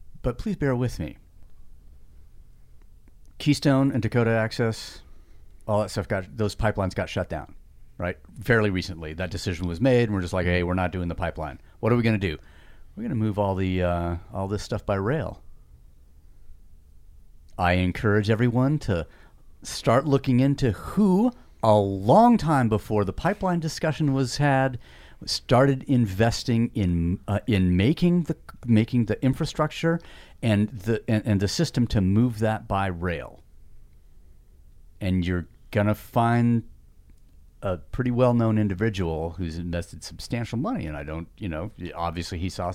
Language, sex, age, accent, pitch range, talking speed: English, male, 40-59, American, 85-120 Hz, 155 wpm